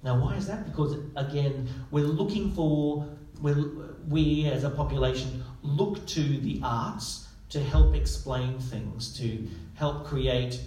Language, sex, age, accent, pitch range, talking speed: English, male, 40-59, Australian, 120-145 Hz, 140 wpm